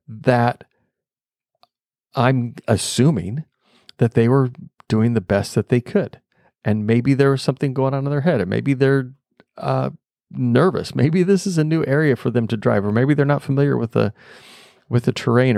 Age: 40-59